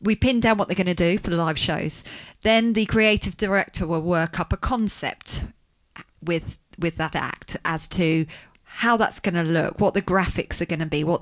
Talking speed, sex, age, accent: 215 wpm, female, 40-59, British